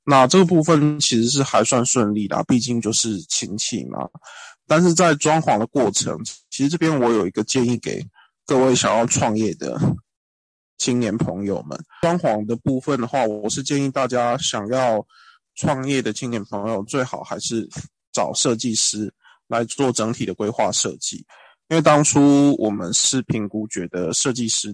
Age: 20-39